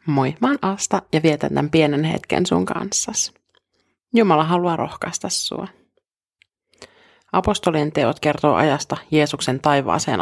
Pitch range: 145-175 Hz